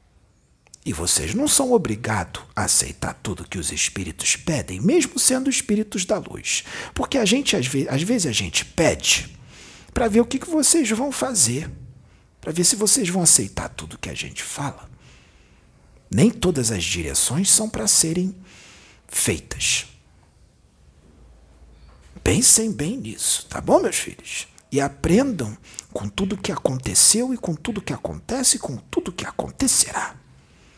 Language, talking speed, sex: Portuguese, 145 wpm, male